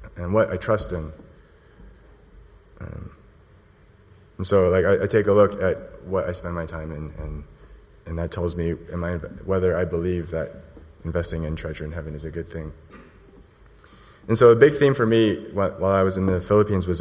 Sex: male